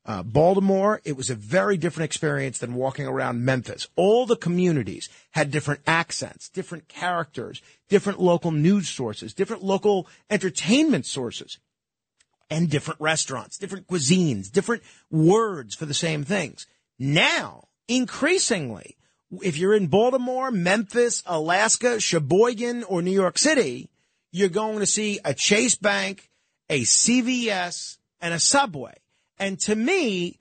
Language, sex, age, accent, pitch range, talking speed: English, male, 40-59, American, 155-205 Hz, 130 wpm